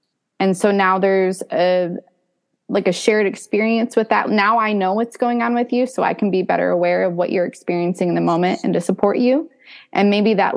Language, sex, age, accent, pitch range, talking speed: English, female, 20-39, American, 175-215 Hz, 220 wpm